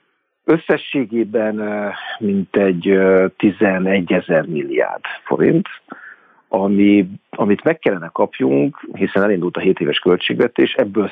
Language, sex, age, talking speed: Hungarian, male, 50-69, 110 wpm